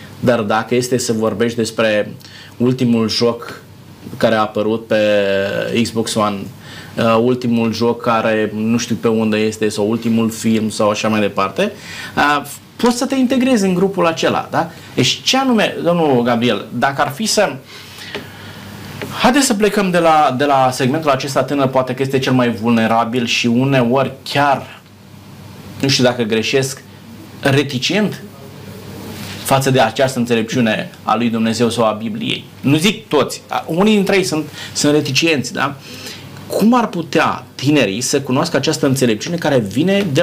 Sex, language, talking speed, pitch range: male, Romanian, 150 wpm, 110-145 Hz